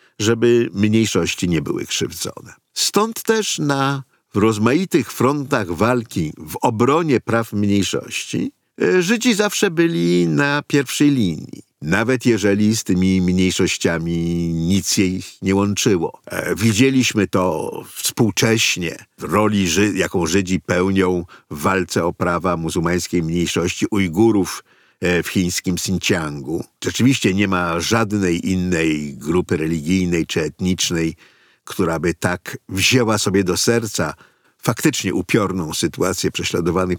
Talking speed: 110 wpm